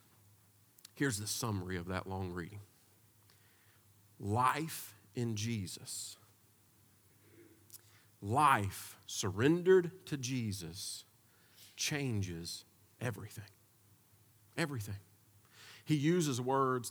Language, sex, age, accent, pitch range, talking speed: English, male, 40-59, American, 105-155 Hz, 70 wpm